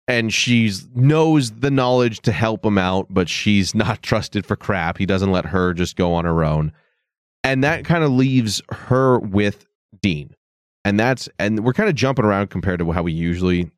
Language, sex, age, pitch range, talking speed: English, male, 30-49, 90-125 Hz, 195 wpm